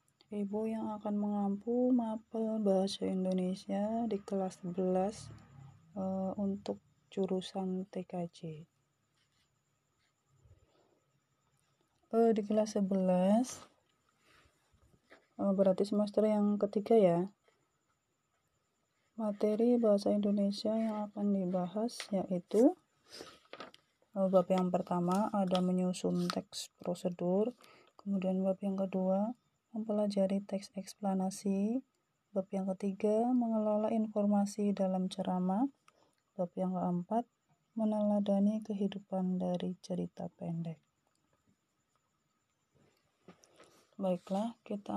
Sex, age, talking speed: female, 20-39, 85 wpm